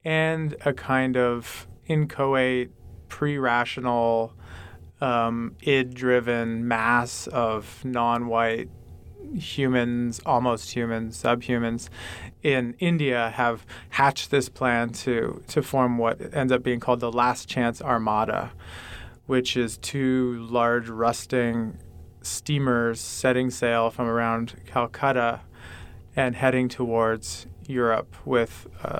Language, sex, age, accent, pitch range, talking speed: English, male, 30-49, American, 115-125 Hz, 105 wpm